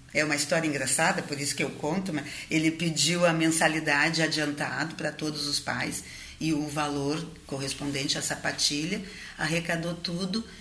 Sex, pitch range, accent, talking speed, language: female, 155-190 Hz, Brazilian, 145 wpm, Portuguese